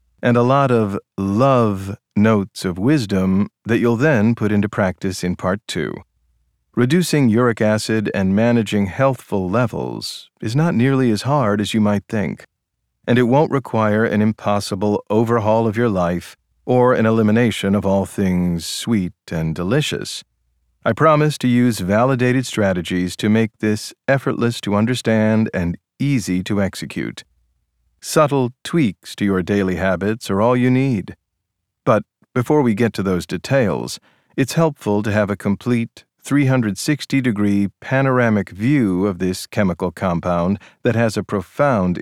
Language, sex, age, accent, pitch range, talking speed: English, male, 40-59, American, 95-125 Hz, 145 wpm